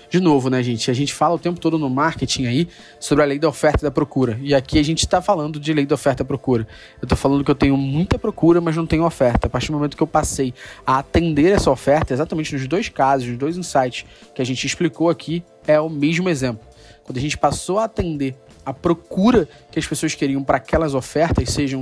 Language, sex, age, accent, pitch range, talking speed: Portuguese, male, 20-39, Brazilian, 135-160 Hz, 245 wpm